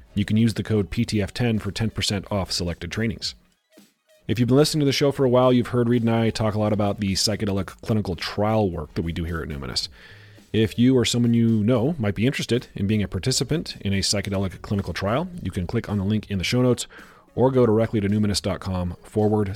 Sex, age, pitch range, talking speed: male, 30-49, 95-115 Hz, 230 wpm